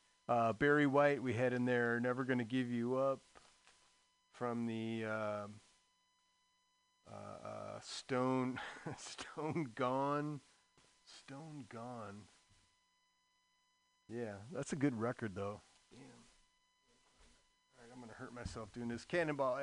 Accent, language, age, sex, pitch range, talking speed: American, English, 40-59, male, 115-170 Hz, 115 wpm